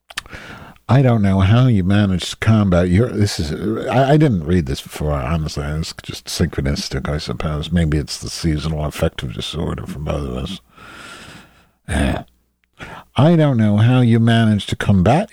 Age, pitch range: 60-79, 75-115 Hz